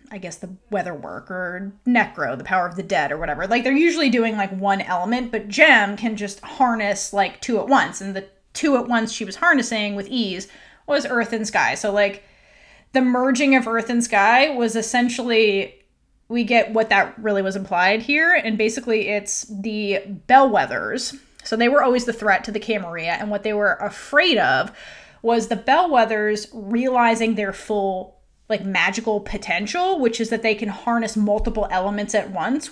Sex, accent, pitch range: female, American, 200-245 Hz